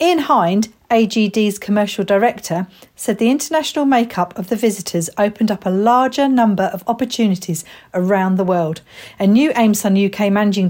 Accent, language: British, English